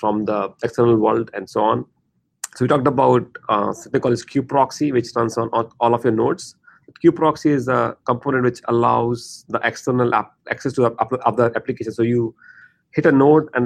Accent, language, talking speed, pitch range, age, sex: Indian, English, 200 wpm, 120-140 Hz, 30-49, male